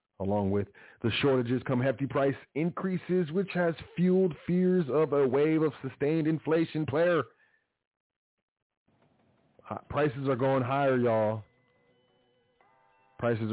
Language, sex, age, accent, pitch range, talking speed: English, male, 30-49, American, 110-140 Hz, 110 wpm